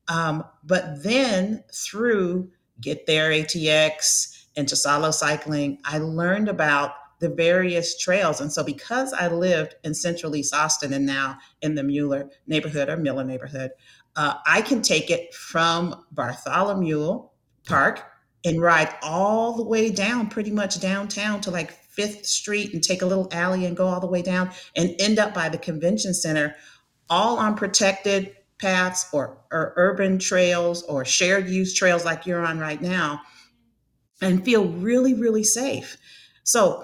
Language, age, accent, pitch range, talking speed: English, 40-59, American, 155-190 Hz, 155 wpm